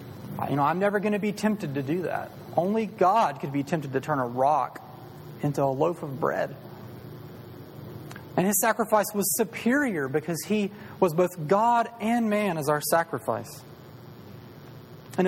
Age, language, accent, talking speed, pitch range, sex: 30-49, English, American, 160 wpm, 135-185 Hz, male